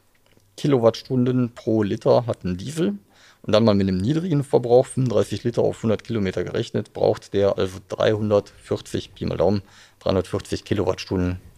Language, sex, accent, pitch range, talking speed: German, male, German, 95-120 Hz, 140 wpm